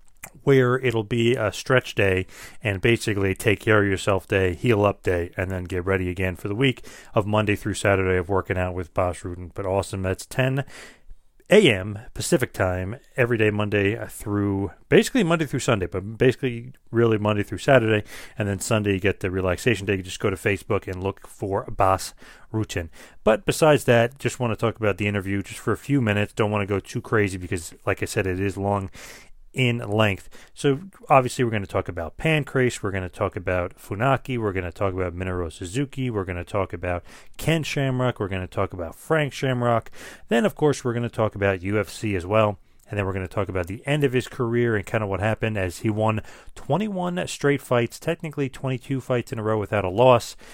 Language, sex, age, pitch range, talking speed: English, male, 30-49, 95-125 Hz, 215 wpm